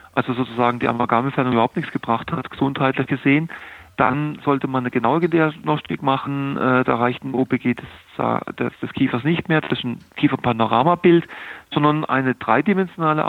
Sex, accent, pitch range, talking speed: male, German, 125-155 Hz, 160 wpm